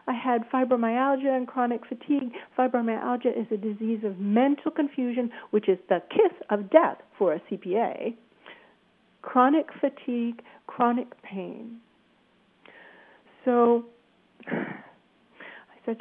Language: English